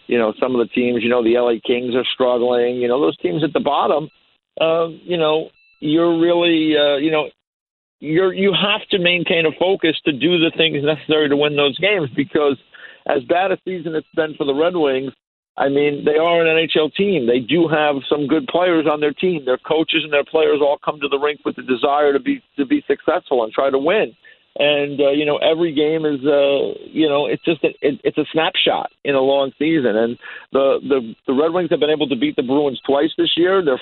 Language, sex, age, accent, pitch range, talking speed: English, male, 50-69, American, 140-170 Hz, 230 wpm